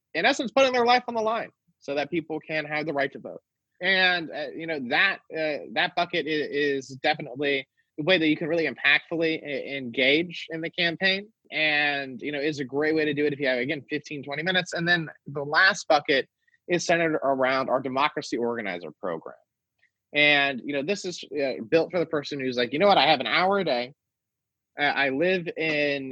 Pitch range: 135-165 Hz